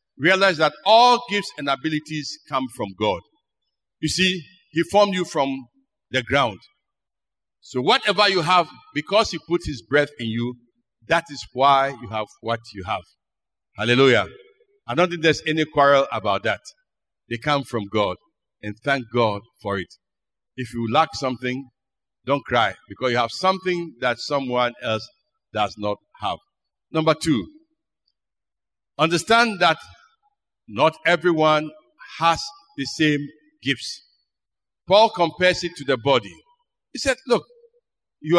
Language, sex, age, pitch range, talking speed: English, male, 60-79, 130-200 Hz, 140 wpm